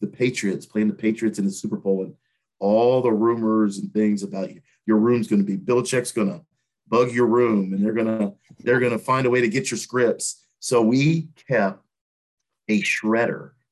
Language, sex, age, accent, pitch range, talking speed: English, male, 40-59, American, 110-140 Hz, 205 wpm